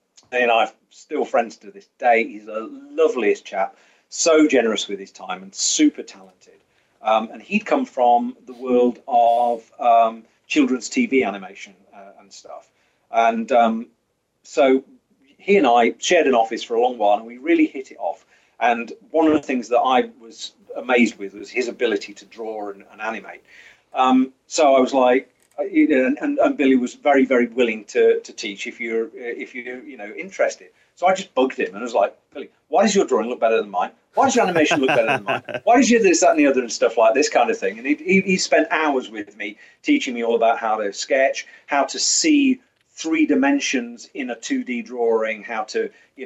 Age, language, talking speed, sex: 40-59, English, 215 wpm, male